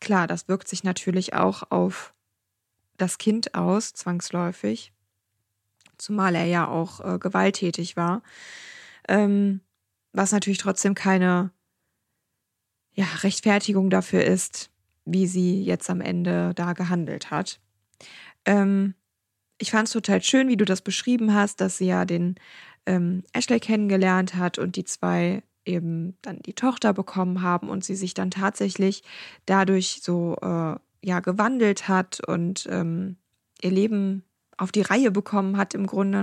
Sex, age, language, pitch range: female, 20-39, German, 175-205 Hz